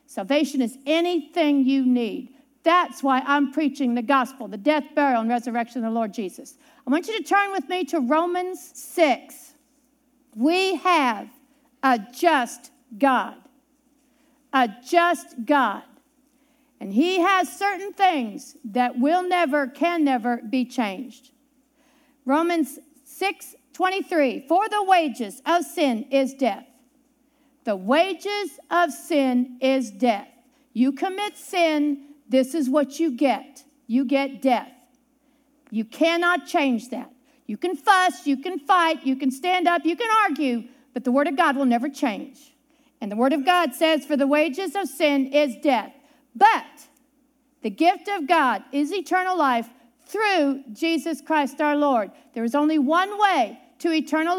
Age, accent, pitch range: 50-69, American, 260-330 Hz